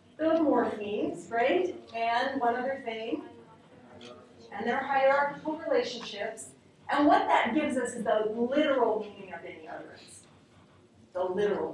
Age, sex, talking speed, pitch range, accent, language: 40-59, female, 130 wpm, 215-280 Hz, American, English